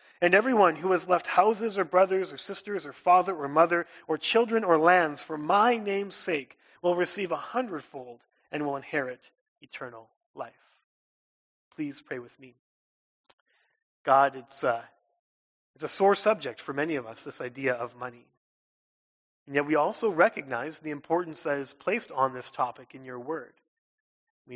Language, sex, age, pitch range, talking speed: English, male, 30-49, 130-170 Hz, 160 wpm